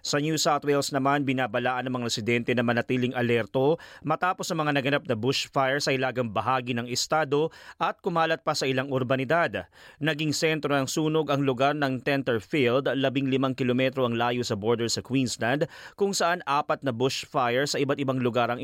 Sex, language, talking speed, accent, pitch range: male, Filipino, 185 wpm, native, 125-155 Hz